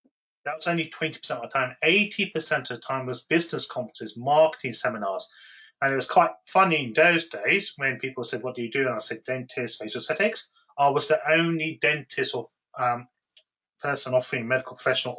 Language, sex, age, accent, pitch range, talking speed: English, male, 30-49, British, 125-160 Hz, 190 wpm